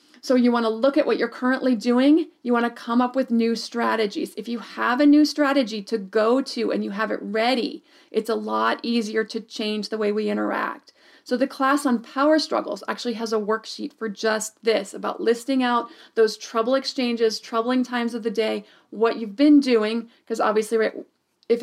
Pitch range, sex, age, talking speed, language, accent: 220-250 Hz, female, 40-59, 195 wpm, English, American